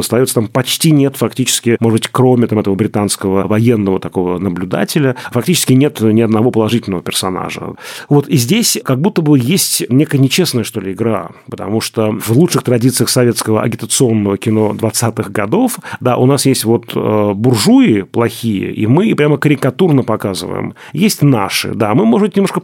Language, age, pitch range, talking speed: Russian, 30-49, 110-150 Hz, 160 wpm